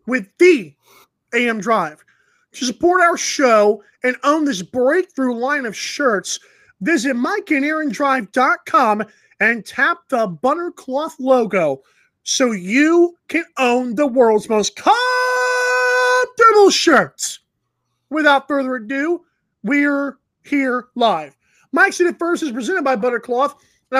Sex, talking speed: male, 115 wpm